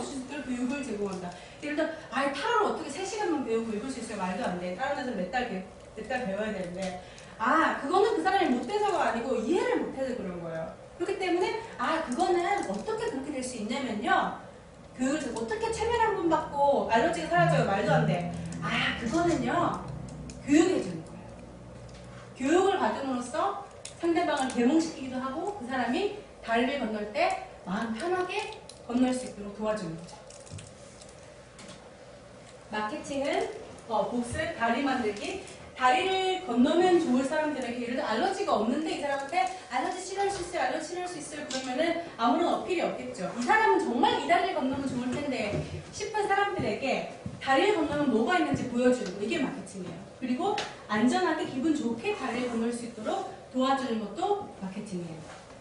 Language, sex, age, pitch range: Korean, female, 30-49, 235-360 Hz